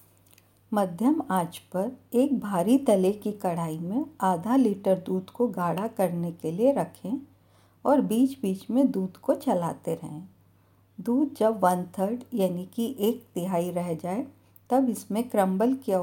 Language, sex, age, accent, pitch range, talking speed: Hindi, female, 50-69, native, 175-235 Hz, 150 wpm